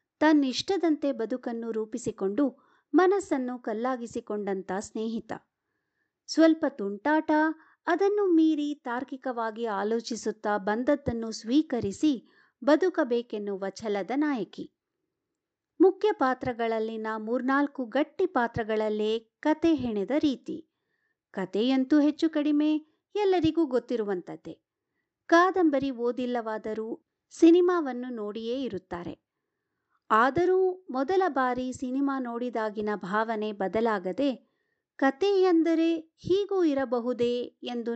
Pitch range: 220-315 Hz